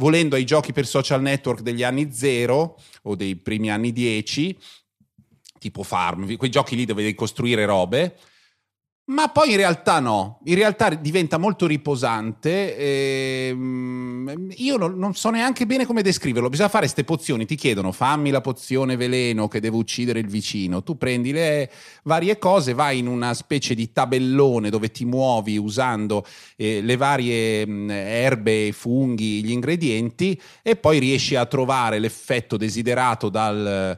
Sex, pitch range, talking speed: male, 105-145 Hz, 150 wpm